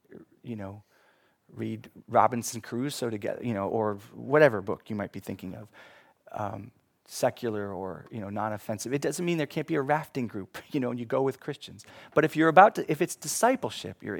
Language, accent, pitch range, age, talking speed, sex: English, American, 110-150 Hz, 30-49, 205 wpm, male